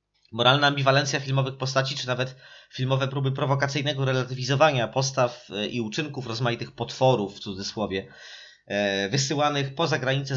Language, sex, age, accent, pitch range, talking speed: Polish, male, 20-39, native, 120-145 Hz, 115 wpm